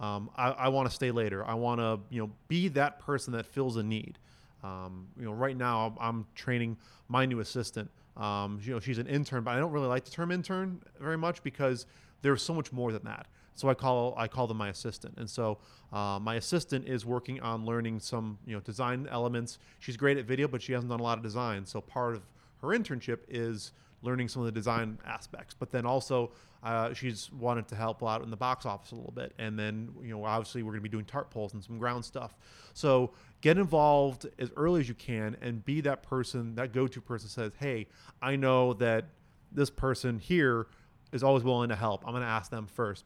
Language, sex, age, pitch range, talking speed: English, male, 30-49, 110-130 Hz, 230 wpm